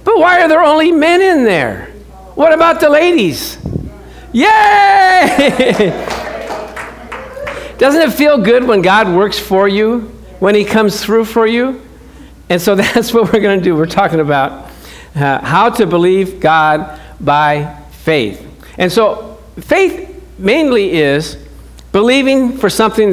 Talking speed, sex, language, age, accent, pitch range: 140 wpm, male, English, 50-69, American, 180-255 Hz